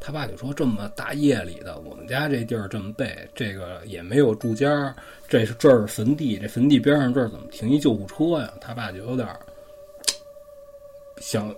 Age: 20-39